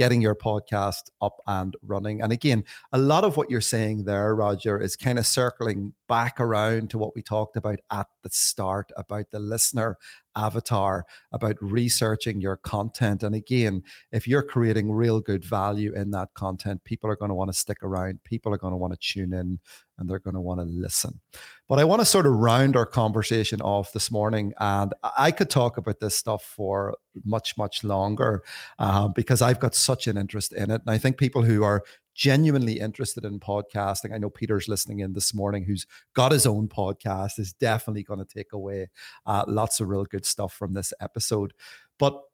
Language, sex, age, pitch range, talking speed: English, male, 30-49, 100-115 Hz, 200 wpm